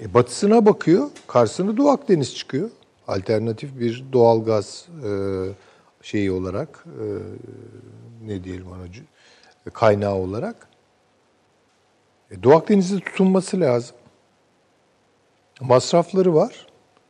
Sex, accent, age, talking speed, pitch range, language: male, native, 60-79, 75 wpm, 105-155 Hz, Turkish